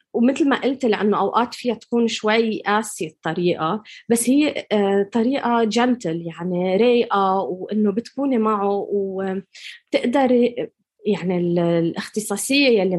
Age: 20-39